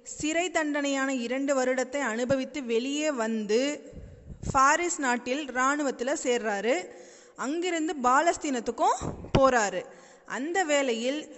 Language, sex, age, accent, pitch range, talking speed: Tamil, female, 20-39, native, 245-300 Hz, 85 wpm